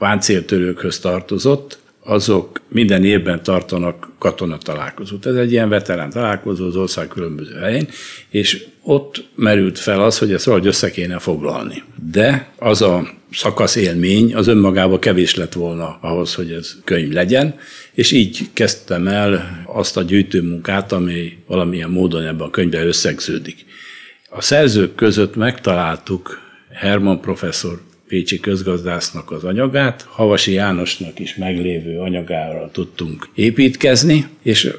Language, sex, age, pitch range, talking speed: Hungarian, male, 60-79, 90-105 Hz, 130 wpm